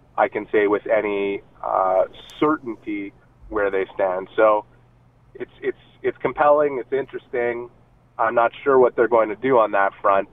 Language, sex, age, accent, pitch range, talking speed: English, male, 30-49, American, 100-130 Hz, 165 wpm